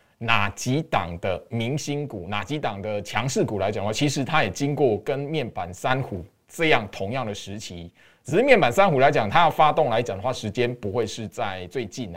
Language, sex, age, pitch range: Chinese, male, 20-39, 110-145 Hz